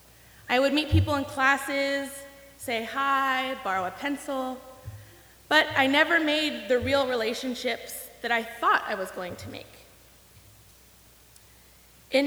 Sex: female